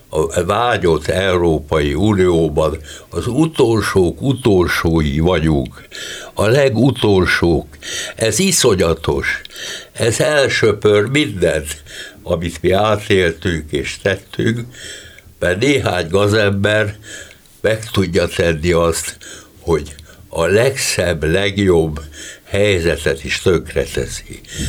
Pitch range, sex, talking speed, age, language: 80-105 Hz, male, 85 wpm, 60-79, Hungarian